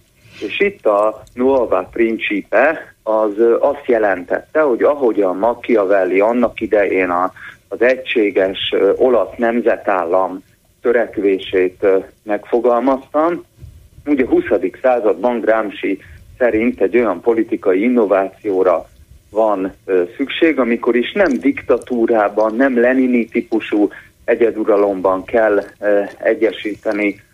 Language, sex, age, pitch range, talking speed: Hungarian, male, 40-59, 100-130 Hz, 90 wpm